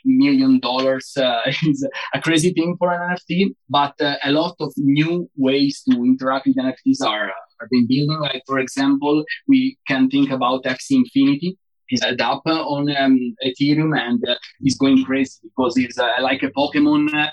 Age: 20-39